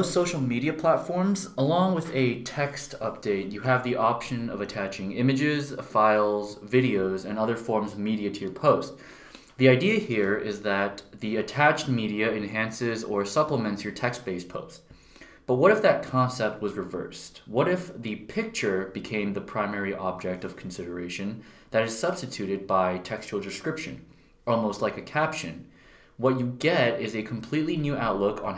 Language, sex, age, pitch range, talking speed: English, male, 20-39, 100-130 Hz, 155 wpm